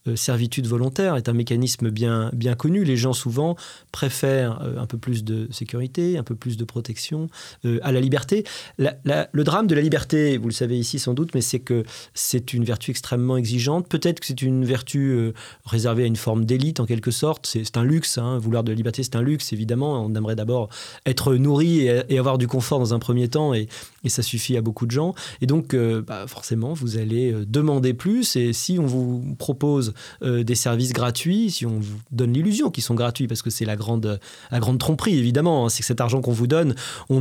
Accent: French